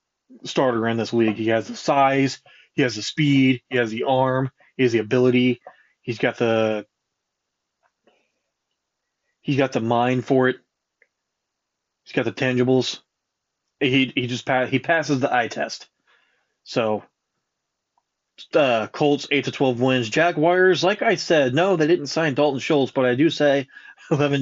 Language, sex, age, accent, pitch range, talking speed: English, male, 20-39, American, 120-140 Hz, 160 wpm